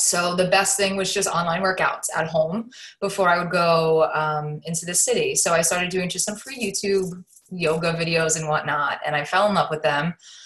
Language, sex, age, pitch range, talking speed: English, female, 20-39, 155-185 Hz, 210 wpm